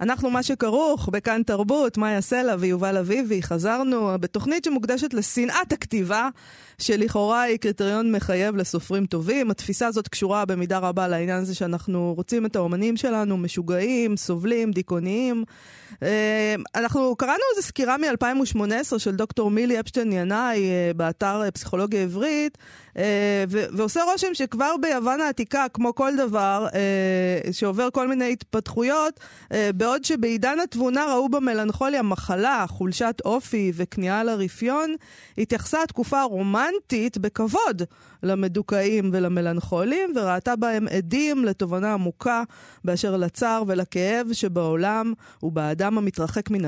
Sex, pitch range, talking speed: female, 190-250 Hz, 120 wpm